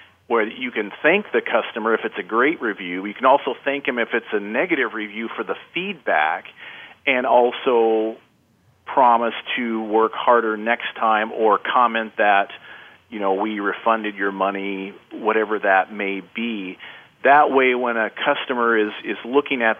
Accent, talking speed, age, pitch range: American, 165 wpm, 40-59, 100-125 Hz